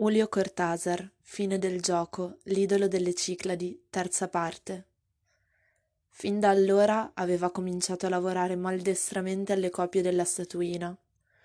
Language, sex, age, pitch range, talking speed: Italian, female, 20-39, 180-200 Hz, 115 wpm